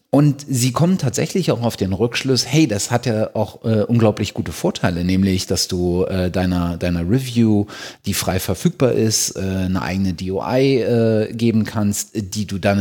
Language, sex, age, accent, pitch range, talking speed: German, male, 30-49, German, 95-125 Hz, 180 wpm